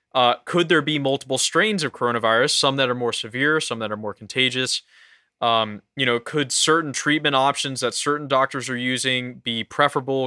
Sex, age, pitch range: male, 20-39, 125-150 Hz